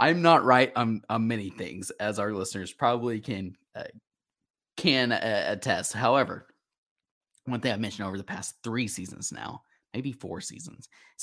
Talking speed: 165 wpm